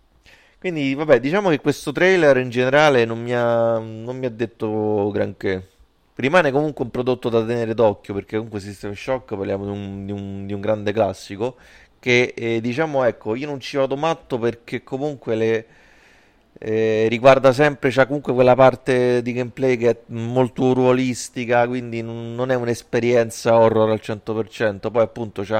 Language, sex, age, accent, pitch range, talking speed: Italian, male, 30-49, native, 105-125 Hz, 150 wpm